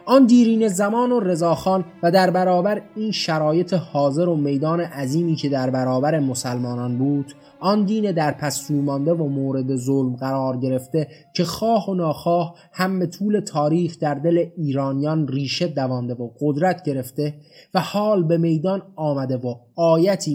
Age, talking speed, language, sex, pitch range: 30-49, 150 wpm, Persian, male, 135-175 Hz